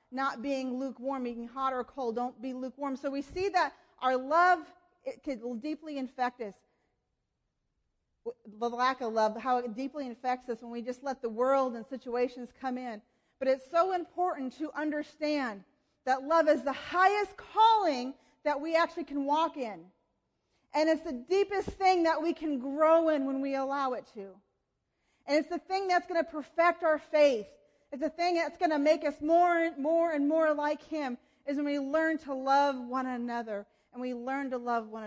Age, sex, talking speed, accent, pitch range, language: 40-59, female, 190 wpm, American, 250-325 Hz, English